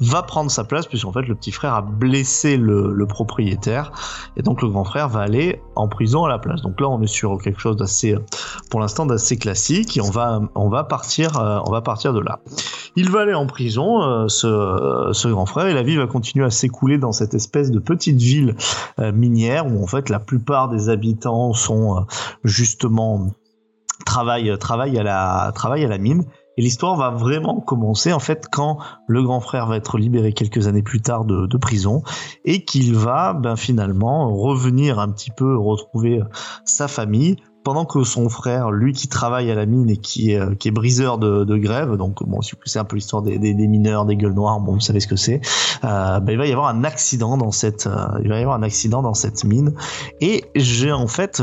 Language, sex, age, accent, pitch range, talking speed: French, male, 30-49, French, 105-135 Hz, 210 wpm